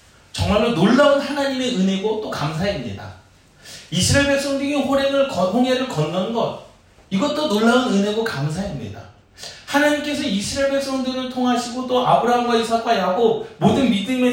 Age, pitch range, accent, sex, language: 30-49, 170-250 Hz, native, male, Korean